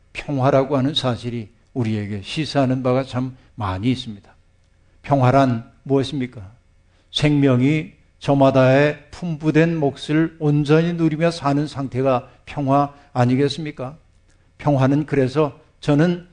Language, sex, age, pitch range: Korean, male, 60-79, 115-155 Hz